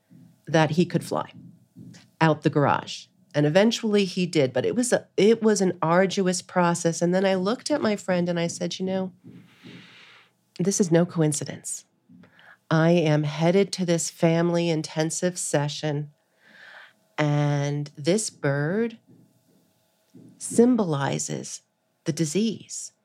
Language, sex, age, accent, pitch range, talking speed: English, female, 40-59, American, 155-195 Hz, 130 wpm